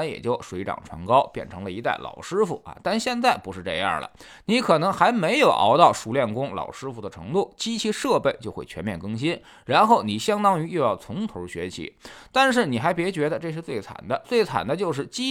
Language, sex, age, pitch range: Chinese, male, 20-39, 145-220 Hz